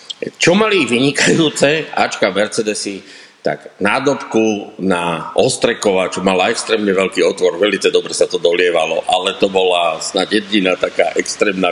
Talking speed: 135 wpm